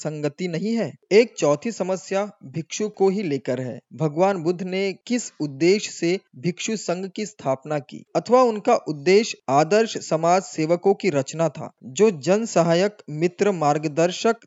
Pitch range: 155-205 Hz